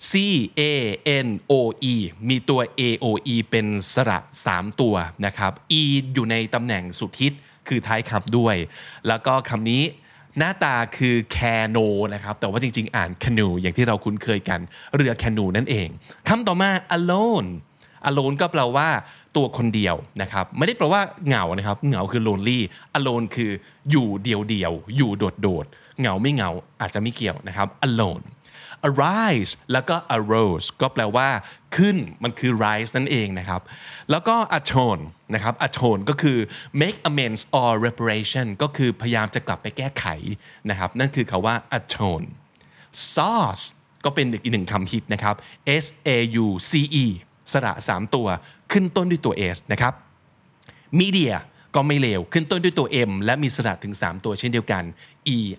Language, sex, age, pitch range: Thai, male, 20-39, 105-140 Hz